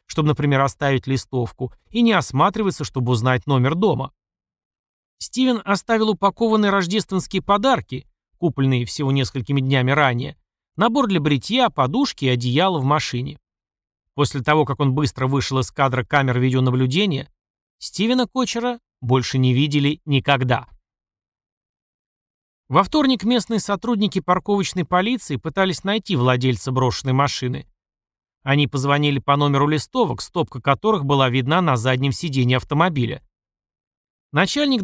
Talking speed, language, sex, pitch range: 120 wpm, Russian, male, 130-185 Hz